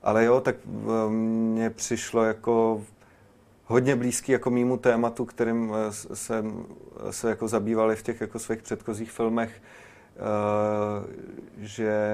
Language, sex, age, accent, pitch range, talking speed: Czech, male, 30-49, native, 105-110 Hz, 115 wpm